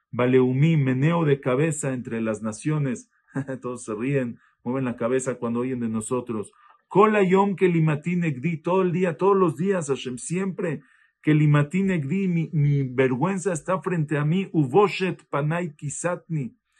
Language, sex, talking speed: Spanish, male, 130 wpm